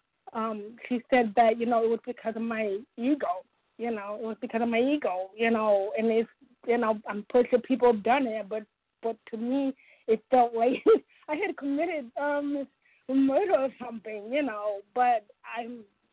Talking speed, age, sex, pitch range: 185 wpm, 20-39, female, 225-260 Hz